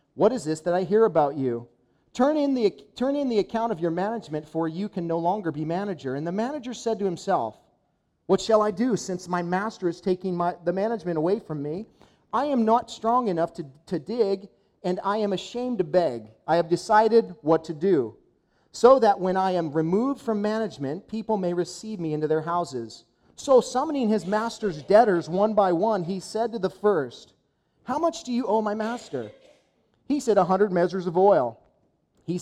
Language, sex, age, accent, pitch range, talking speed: English, male, 40-59, American, 165-225 Hz, 200 wpm